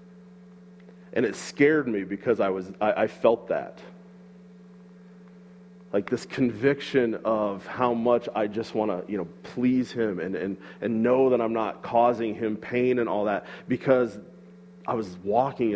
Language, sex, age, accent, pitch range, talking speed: English, male, 30-49, American, 90-135 Hz, 160 wpm